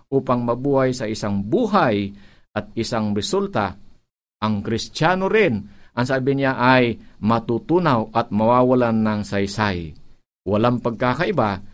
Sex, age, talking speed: male, 50-69, 110 wpm